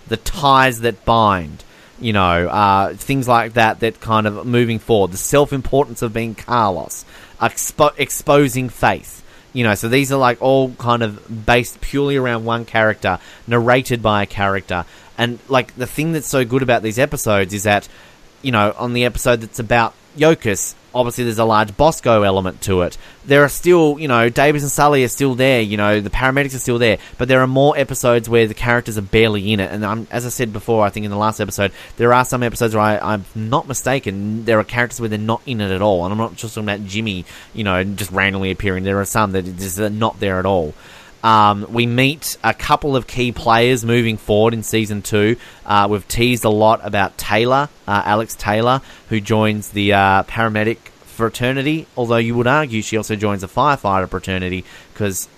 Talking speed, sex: 205 wpm, male